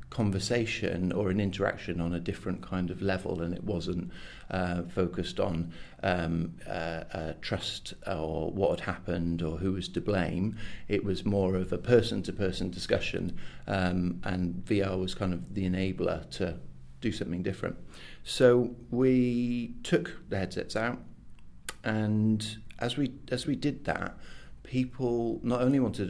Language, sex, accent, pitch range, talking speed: English, male, British, 90-110 Hz, 150 wpm